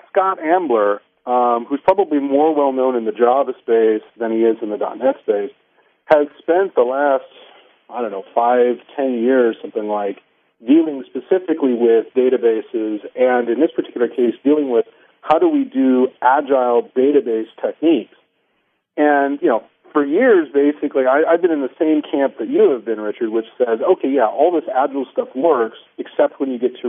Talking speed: 175 wpm